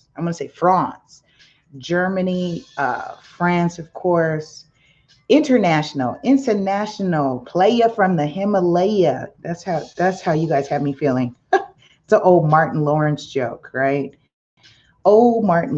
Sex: female